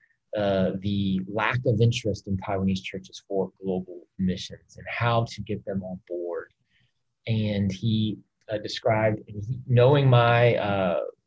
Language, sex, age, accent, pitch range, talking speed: English, male, 30-49, American, 100-130 Hz, 145 wpm